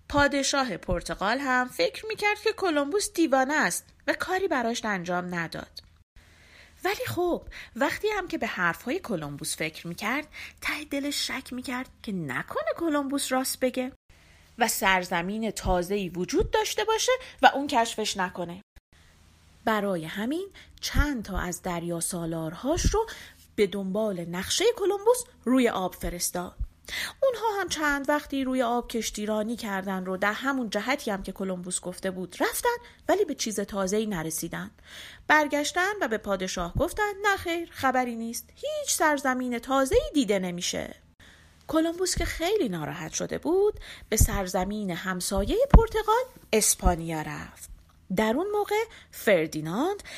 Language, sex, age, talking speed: Persian, female, 30-49, 130 wpm